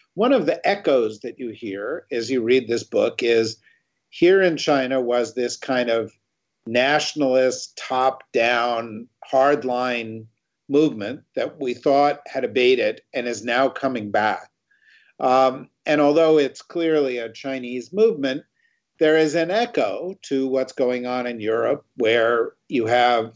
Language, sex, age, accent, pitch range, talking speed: English, male, 50-69, American, 120-175 Hz, 140 wpm